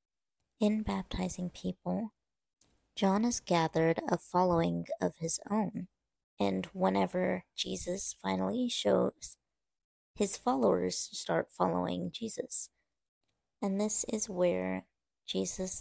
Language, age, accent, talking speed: English, 30-49, American, 100 wpm